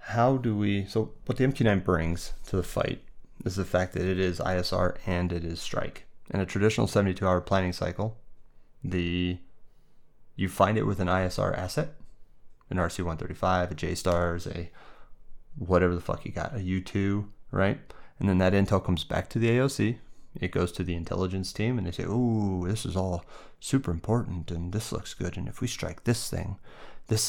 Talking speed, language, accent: 185 wpm, English, American